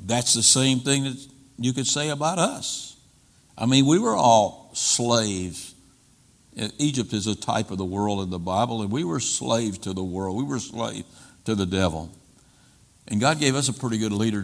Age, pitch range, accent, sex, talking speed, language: 60-79, 95-130 Hz, American, male, 195 wpm, English